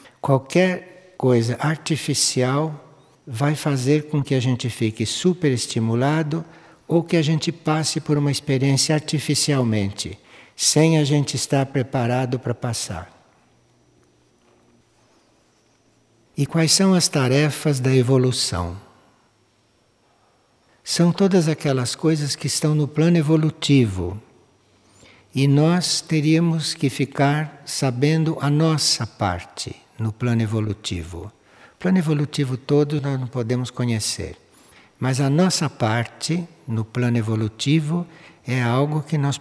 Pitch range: 120-150 Hz